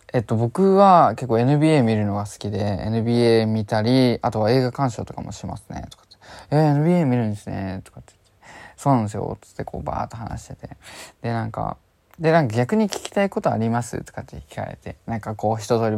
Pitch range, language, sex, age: 105-130 Hz, Japanese, male, 20-39